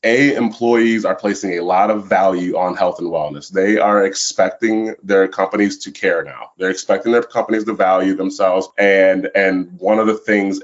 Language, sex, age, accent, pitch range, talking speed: English, male, 20-39, American, 95-115 Hz, 185 wpm